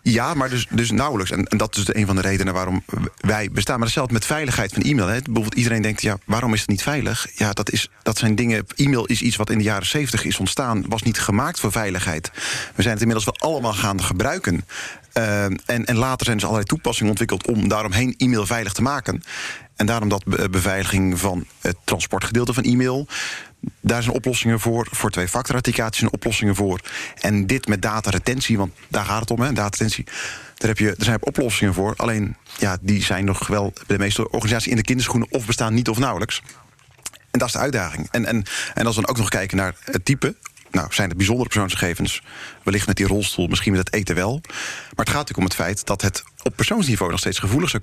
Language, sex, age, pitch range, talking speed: Dutch, male, 40-59, 100-120 Hz, 225 wpm